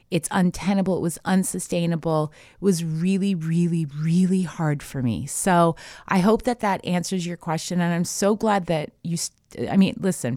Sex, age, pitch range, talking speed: female, 30-49, 150-190 Hz, 175 wpm